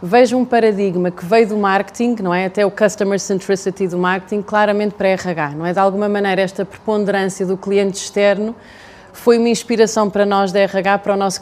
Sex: female